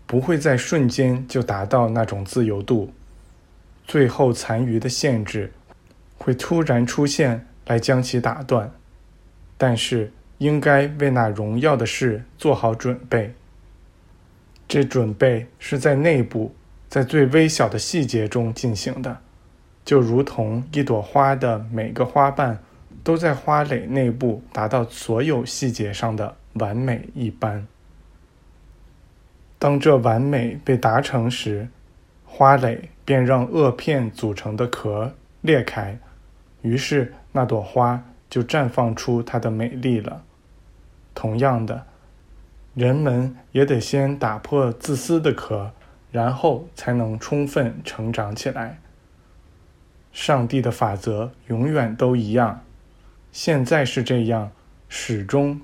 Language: Chinese